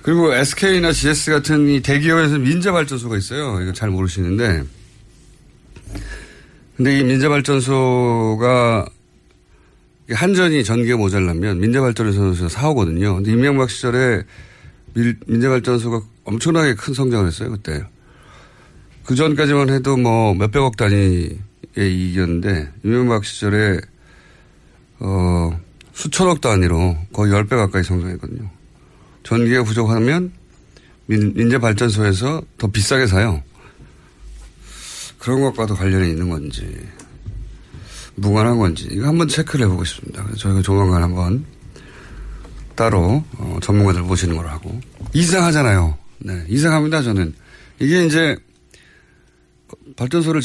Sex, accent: male, native